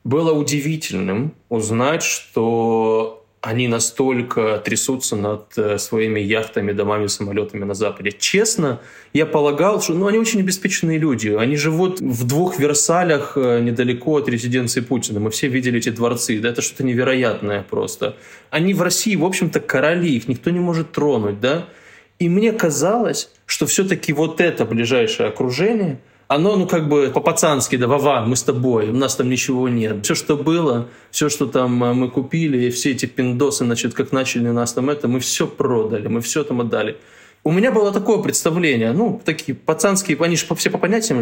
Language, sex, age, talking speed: Russian, male, 20-39, 170 wpm